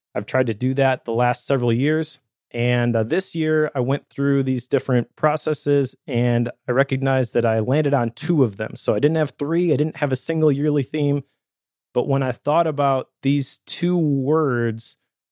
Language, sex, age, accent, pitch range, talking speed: English, male, 30-49, American, 120-145 Hz, 190 wpm